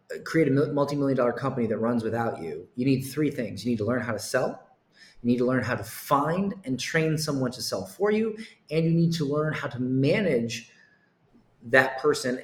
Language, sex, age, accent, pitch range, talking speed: English, male, 30-49, American, 120-150 Hz, 210 wpm